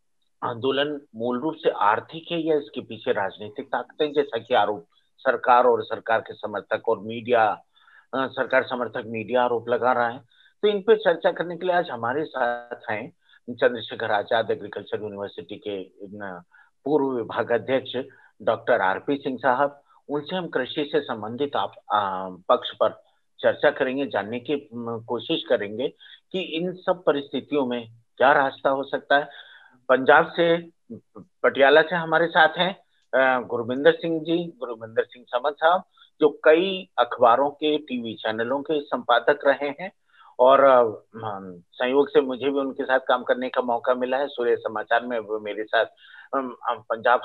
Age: 50-69